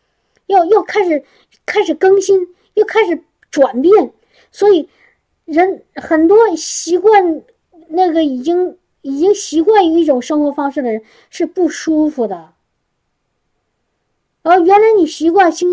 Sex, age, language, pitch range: male, 50-69, Chinese, 280-385 Hz